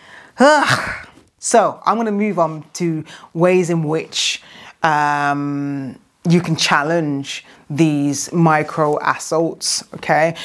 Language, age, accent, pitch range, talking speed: English, 30-49, British, 155-185 Hz, 105 wpm